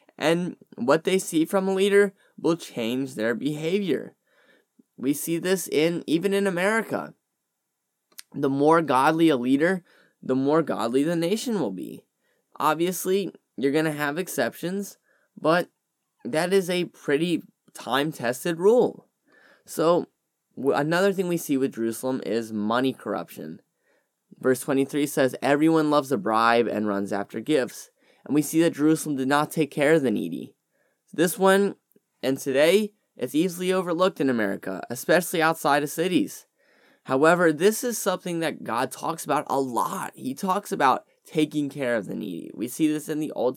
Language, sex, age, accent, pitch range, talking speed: English, male, 10-29, American, 135-185 Hz, 155 wpm